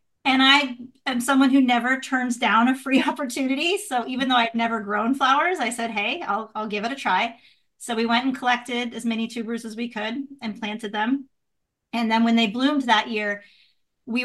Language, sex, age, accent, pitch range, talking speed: English, female, 30-49, American, 200-240 Hz, 205 wpm